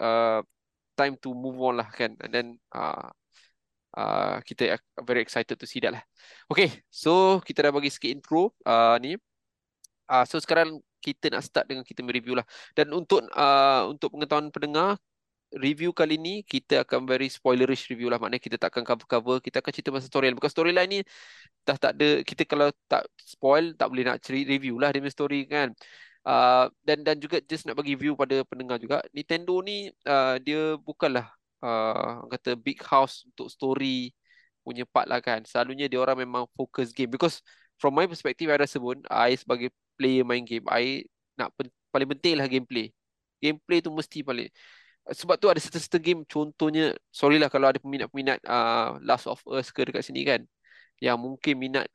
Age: 20-39